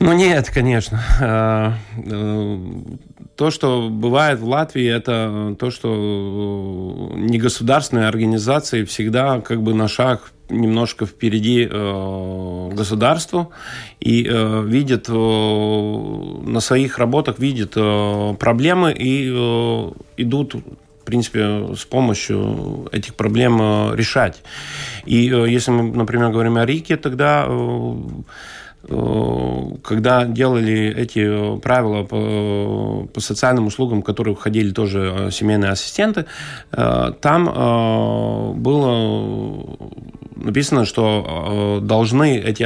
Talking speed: 90 wpm